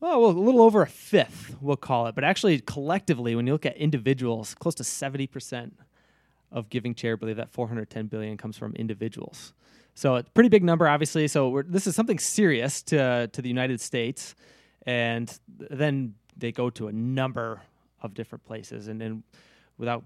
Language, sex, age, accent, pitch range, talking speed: English, male, 20-39, American, 115-150 Hz, 190 wpm